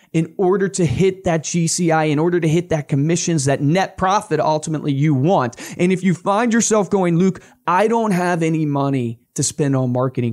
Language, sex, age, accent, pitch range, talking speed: English, male, 30-49, American, 140-185 Hz, 200 wpm